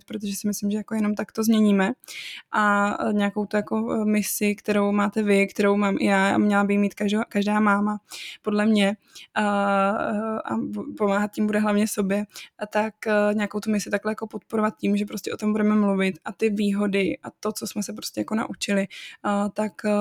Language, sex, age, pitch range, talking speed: Czech, female, 20-39, 200-215 Hz, 195 wpm